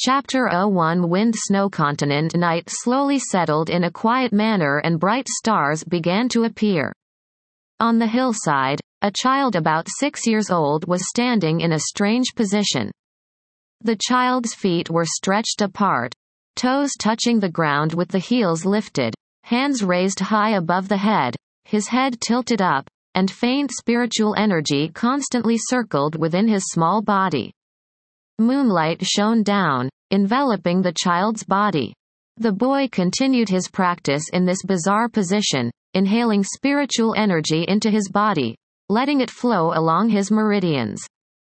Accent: American